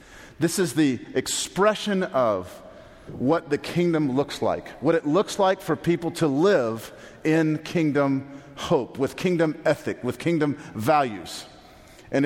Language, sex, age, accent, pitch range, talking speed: English, male, 40-59, American, 130-190 Hz, 135 wpm